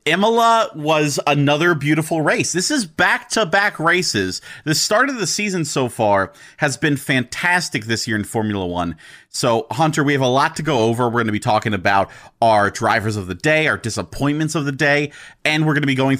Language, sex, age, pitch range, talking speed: English, male, 30-49, 115-155 Hz, 205 wpm